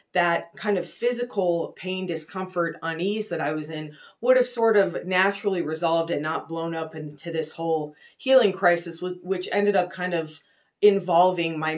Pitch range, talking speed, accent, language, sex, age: 160-200 Hz, 170 wpm, American, English, female, 30-49